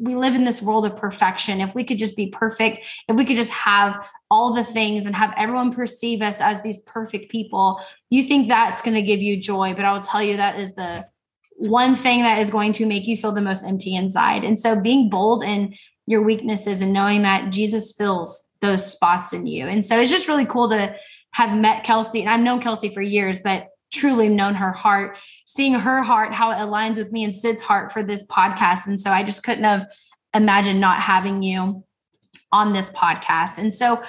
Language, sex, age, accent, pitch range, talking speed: English, female, 10-29, American, 200-235 Hz, 220 wpm